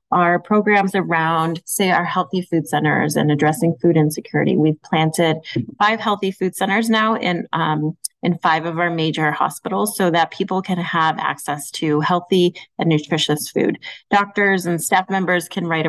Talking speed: 160 wpm